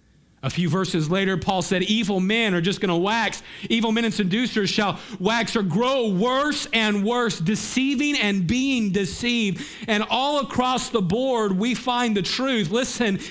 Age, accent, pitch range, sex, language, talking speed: 40-59, American, 165-235 Hz, male, English, 165 wpm